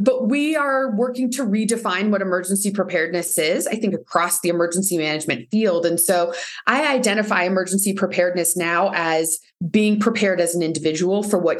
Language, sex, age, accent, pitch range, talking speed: English, female, 20-39, American, 175-230 Hz, 165 wpm